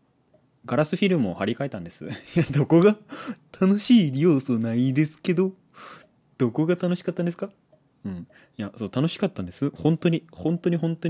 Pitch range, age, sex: 100-155 Hz, 20-39, male